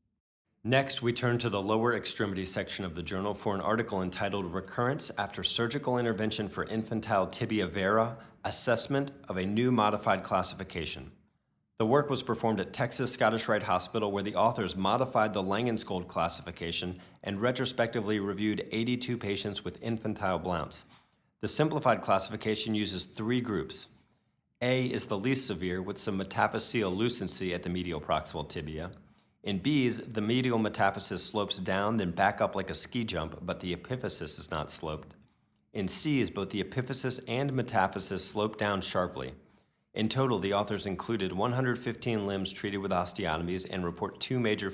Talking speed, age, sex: 155 wpm, 40-59, male